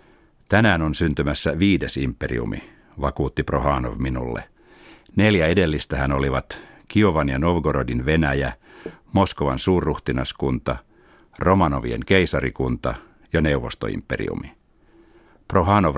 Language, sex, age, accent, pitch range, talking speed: Finnish, male, 60-79, native, 70-85 Hz, 85 wpm